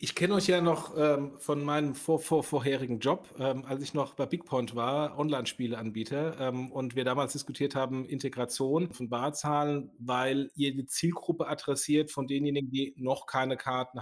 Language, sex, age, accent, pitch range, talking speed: German, male, 30-49, German, 130-155 Hz, 175 wpm